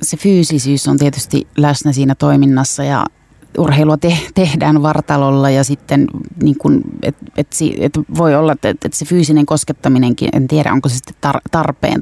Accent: native